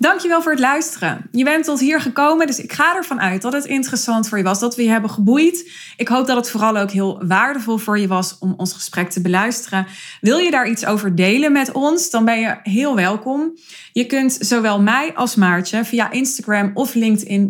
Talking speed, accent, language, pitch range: 220 wpm, Dutch, Dutch, 190-255 Hz